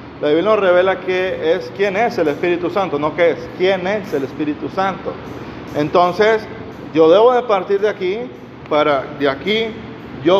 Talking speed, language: 175 wpm, Spanish